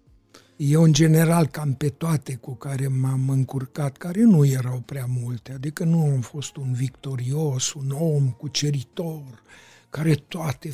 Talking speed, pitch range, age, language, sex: 145 wpm, 135-165 Hz, 60-79, Romanian, male